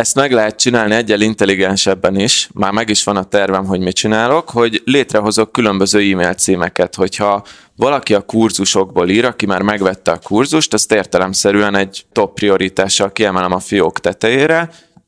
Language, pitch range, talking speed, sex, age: Hungarian, 95-115 Hz, 160 wpm, male, 20-39